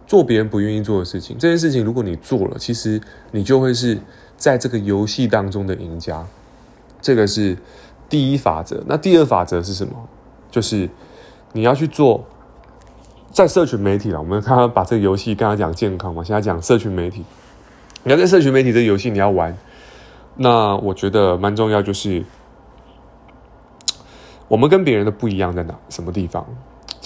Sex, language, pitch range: male, Chinese, 100-135 Hz